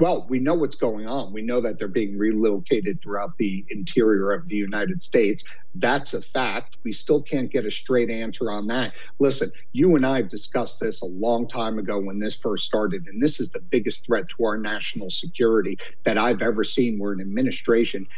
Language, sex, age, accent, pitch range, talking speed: English, male, 50-69, American, 110-140 Hz, 210 wpm